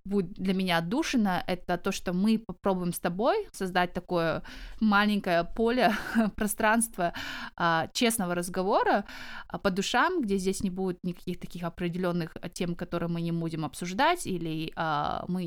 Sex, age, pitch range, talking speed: female, 20-39, 180-210 Hz, 135 wpm